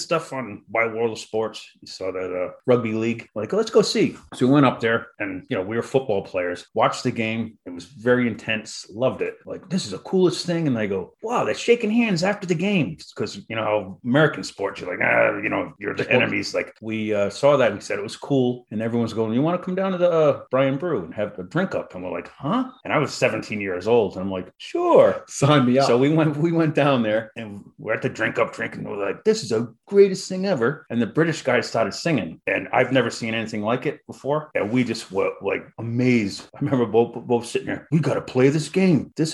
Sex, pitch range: male, 115-175 Hz